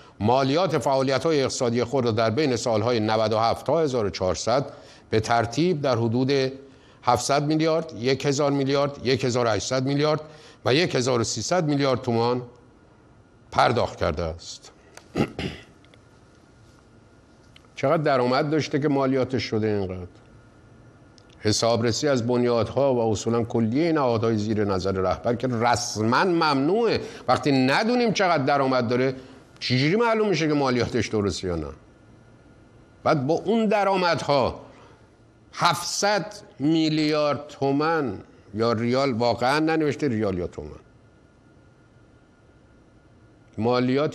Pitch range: 115-150 Hz